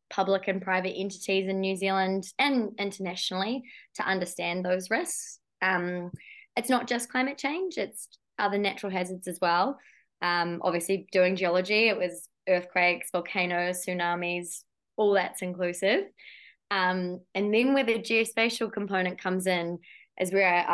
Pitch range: 180-205 Hz